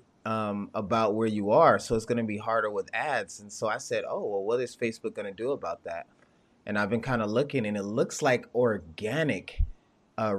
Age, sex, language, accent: 20-39, male, English, American